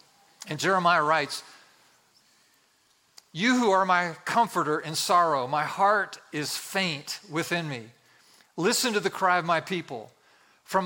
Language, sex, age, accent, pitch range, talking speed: English, male, 50-69, American, 155-190 Hz, 135 wpm